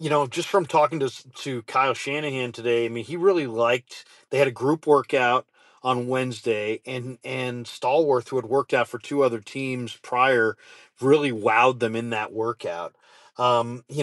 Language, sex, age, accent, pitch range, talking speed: English, male, 40-59, American, 125-155 Hz, 180 wpm